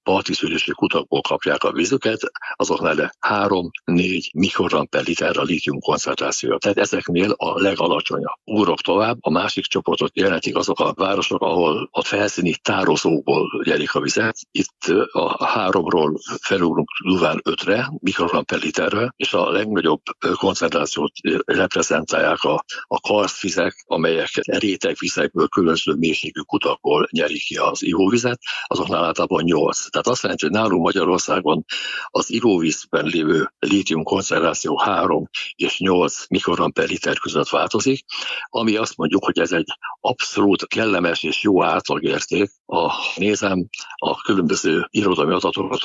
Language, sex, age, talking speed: Hungarian, male, 60-79, 125 wpm